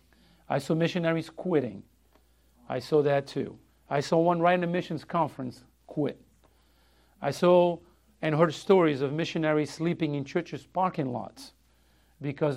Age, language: 50-69, English